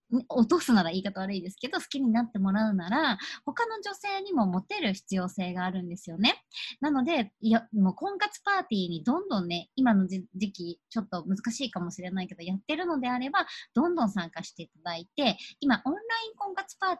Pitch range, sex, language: 190-275 Hz, male, Japanese